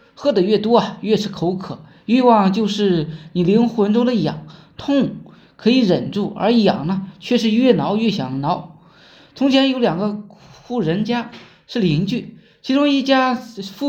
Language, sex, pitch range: Chinese, male, 190-240 Hz